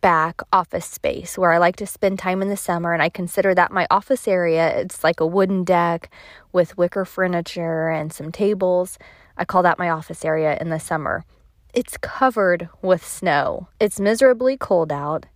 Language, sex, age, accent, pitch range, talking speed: English, female, 20-39, American, 170-215 Hz, 185 wpm